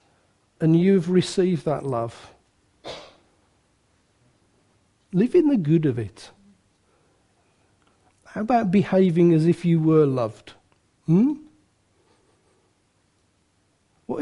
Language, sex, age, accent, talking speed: English, male, 50-69, British, 90 wpm